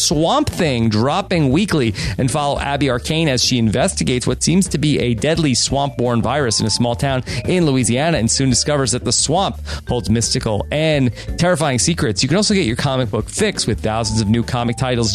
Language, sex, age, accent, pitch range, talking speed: English, male, 30-49, American, 120-175 Hz, 200 wpm